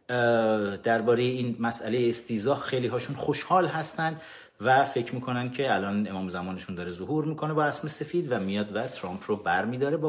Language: Persian